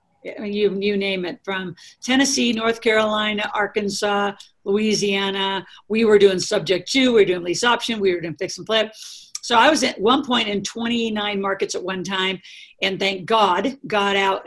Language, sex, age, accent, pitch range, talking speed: English, female, 50-69, American, 190-220 Hz, 185 wpm